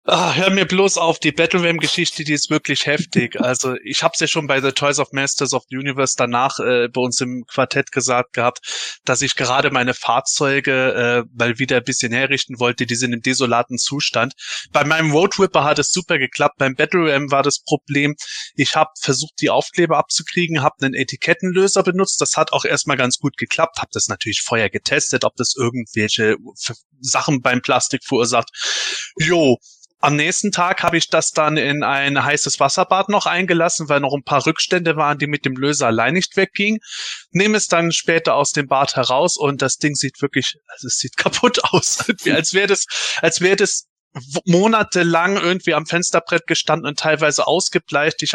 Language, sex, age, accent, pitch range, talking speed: German, male, 20-39, German, 135-170 Hz, 185 wpm